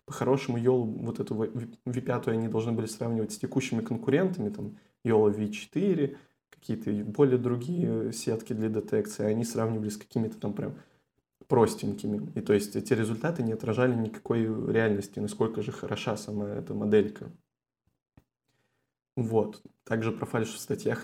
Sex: male